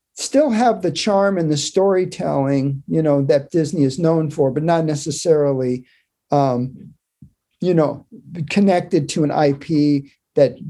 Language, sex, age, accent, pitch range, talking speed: English, male, 50-69, American, 140-170 Hz, 140 wpm